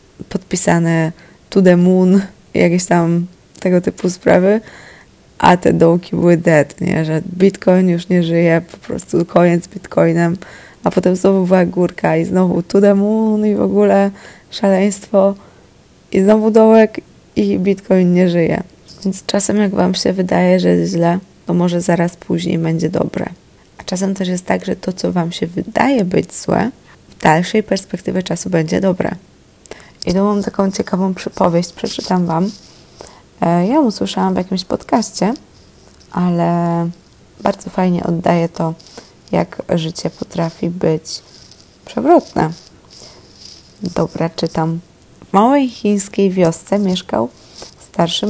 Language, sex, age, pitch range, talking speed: Polish, female, 20-39, 170-195 Hz, 135 wpm